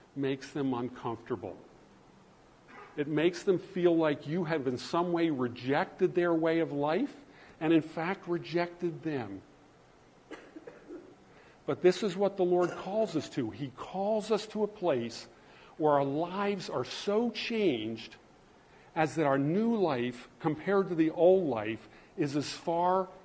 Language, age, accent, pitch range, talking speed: English, 50-69, American, 130-175 Hz, 145 wpm